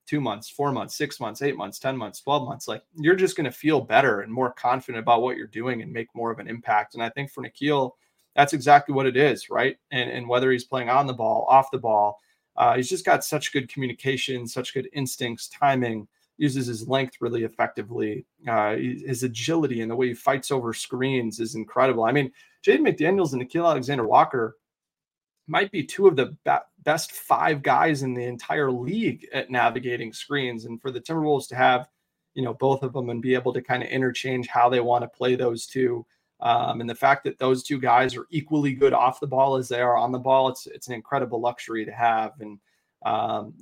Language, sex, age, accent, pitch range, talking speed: English, male, 30-49, American, 120-135 Hz, 215 wpm